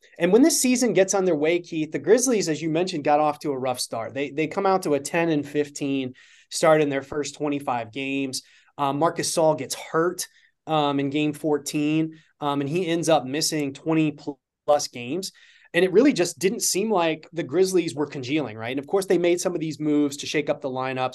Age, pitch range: 20-39, 135-170 Hz